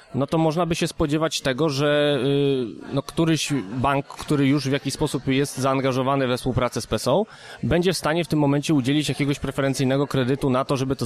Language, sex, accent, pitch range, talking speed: Polish, male, native, 130-160 Hz, 195 wpm